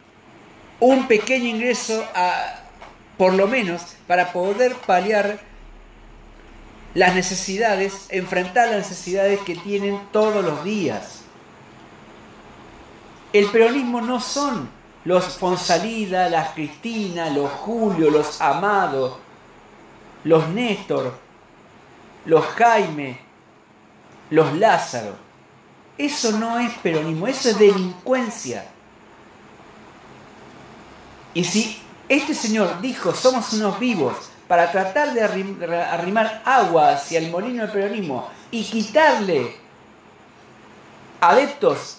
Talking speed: 95 wpm